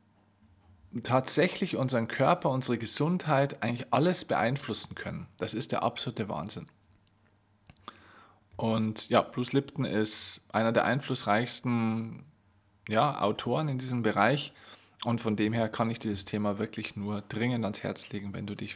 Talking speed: 140 wpm